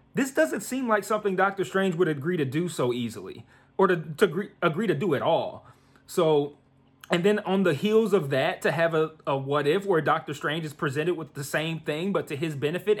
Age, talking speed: 30-49, 225 wpm